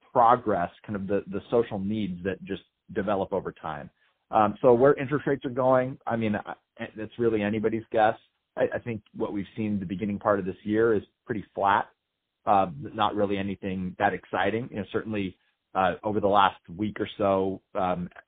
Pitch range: 95-115 Hz